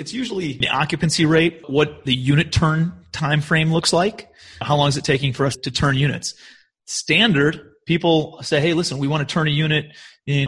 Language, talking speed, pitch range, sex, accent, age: English, 200 wpm, 135-160 Hz, male, American, 30-49